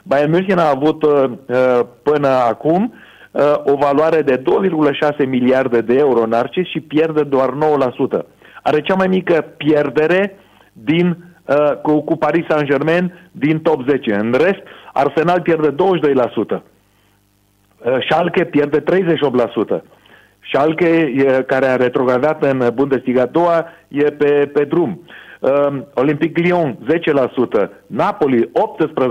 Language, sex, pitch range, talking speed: Romanian, male, 130-165 Hz, 115 wpm